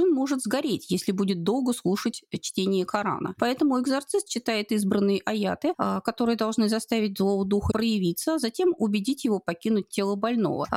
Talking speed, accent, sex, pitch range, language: 140 wpm, native, female, 185-250 Hz, Russian